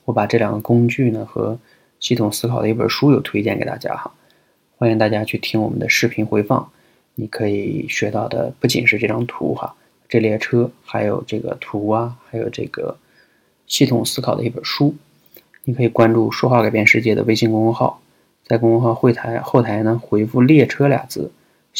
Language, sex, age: Chinese, male, 20-39